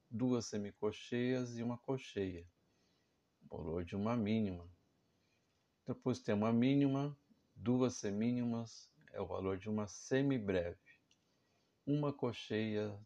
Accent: Brazilian